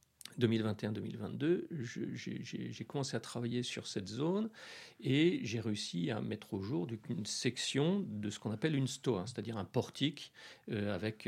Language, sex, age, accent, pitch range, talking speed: French, male, 40-59, French, 115-155 Hz, 150 wpm